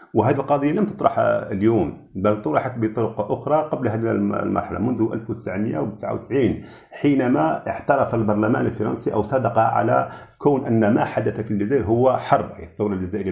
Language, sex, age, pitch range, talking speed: Arabic, male, 50-69, 110-140 Hz, 145 wpm